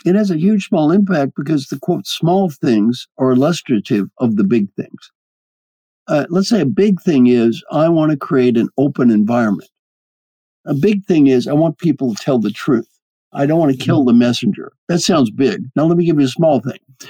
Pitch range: 135-195 Hz